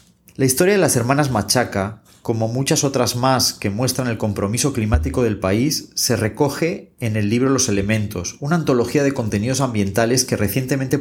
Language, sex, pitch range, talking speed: Spanish, male, 110-140 Hz, 170 wpm